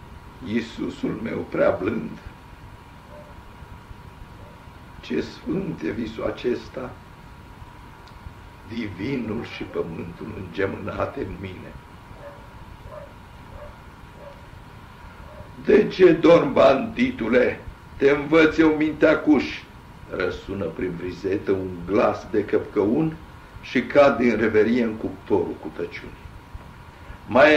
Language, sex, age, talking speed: Romanian, male, 60-79, 85 wpm